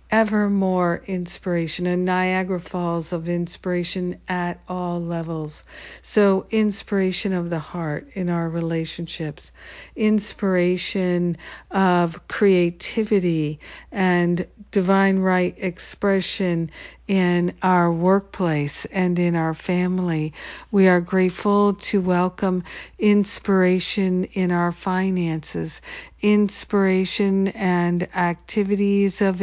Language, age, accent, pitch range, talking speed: English, 50-69, American, 170-195 Hz, 95 wpm